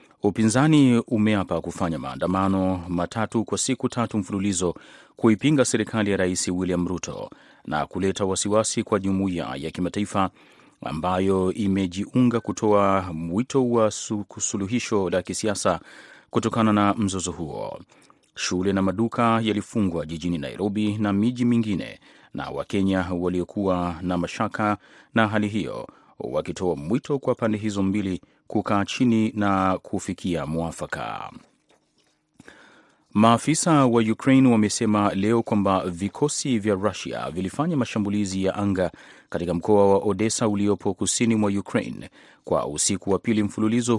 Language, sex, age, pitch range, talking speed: Swahili, male, 30-49, 95-110 Hz, 120 wpm